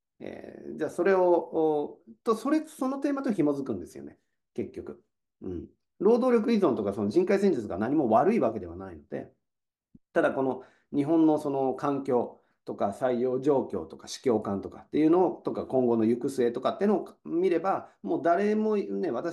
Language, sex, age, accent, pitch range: Japanese, male, 40-59, native, 120-185 Hz